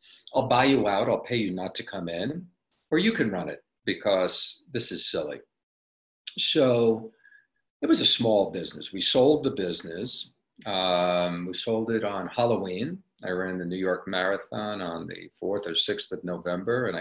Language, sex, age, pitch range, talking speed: English, male, 50-69, 95-110 Hz, 175 wpm